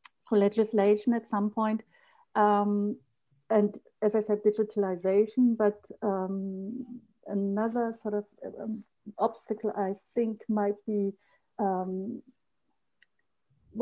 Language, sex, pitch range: English, female, 195-220 Hz